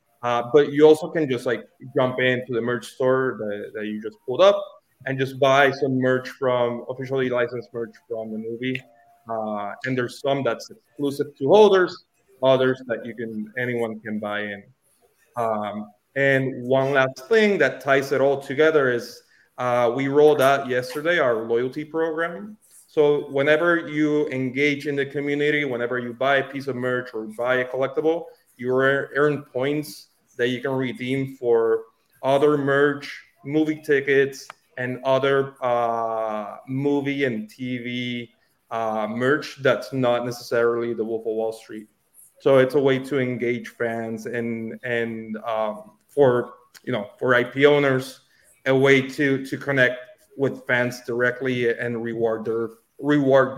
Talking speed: 155 wpm